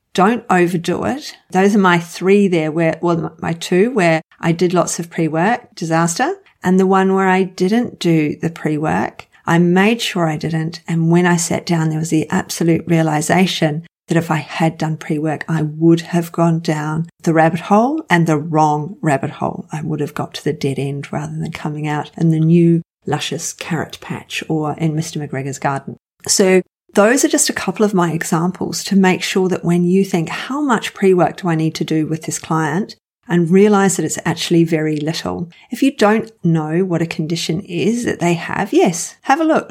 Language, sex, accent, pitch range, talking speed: English, female, Australian, 160-190 Hz, 205 wpm